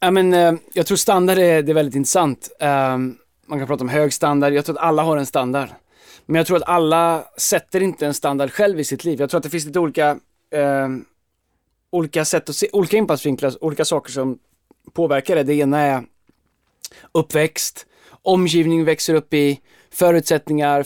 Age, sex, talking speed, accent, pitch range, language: 20-39, male, 175 wpm, native, 140-165 Hz, Swedish